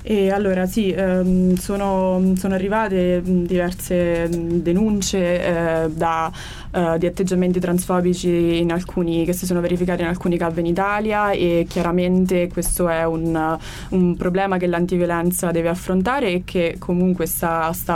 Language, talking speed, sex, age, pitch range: Italian, 140 wpm, female, 20-39, 170-185 Hz